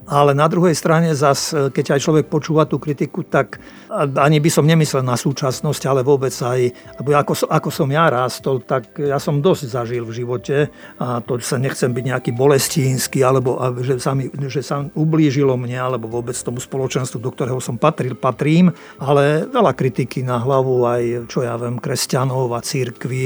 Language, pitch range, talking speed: Slovak, 125-155 Hz, 175 wpm